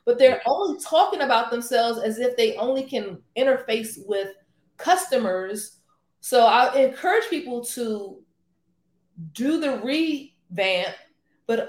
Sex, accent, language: female, American, English